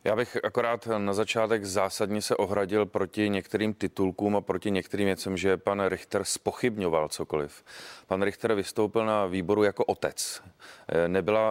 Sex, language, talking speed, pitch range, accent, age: male, Czech, 145 wpm, 105-115 Hz, native, 30-49